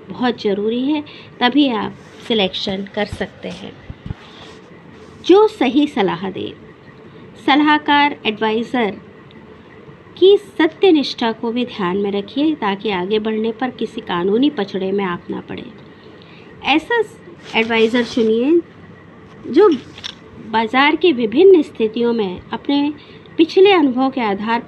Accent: native